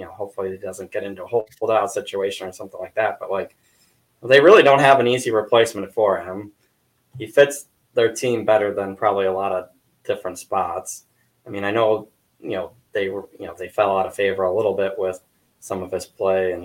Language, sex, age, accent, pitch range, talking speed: English, male, 20-39, American, 95-125 Hz, 220 wpm